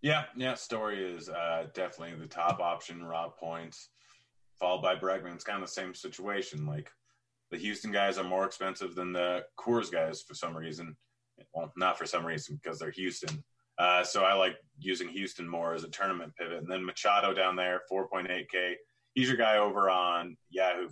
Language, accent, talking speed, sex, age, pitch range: English, American, 190 wpm, male, 30-49, 85-110 Hz